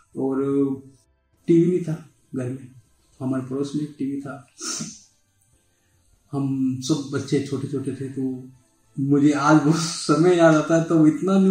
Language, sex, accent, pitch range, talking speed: Hindi, male, native, 140-180 Hz, 135 wpm